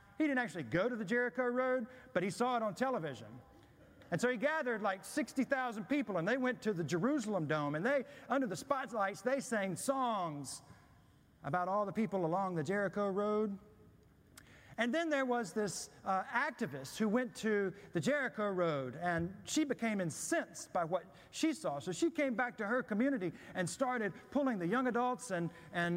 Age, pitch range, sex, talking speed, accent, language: 40-59, 170-250 Hz, male, 185 wpm, American, English